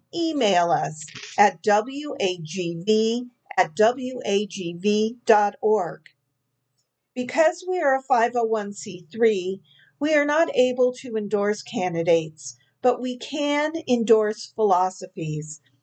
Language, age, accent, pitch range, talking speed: English, 50-69, American, 175-250 Hz, 85 wpm